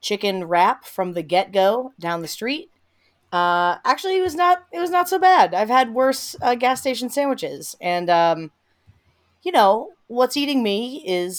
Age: 30-49